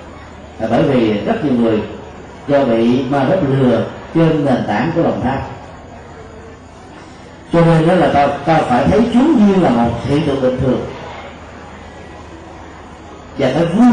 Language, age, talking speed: Vietnamese, 30-49, 155 wpm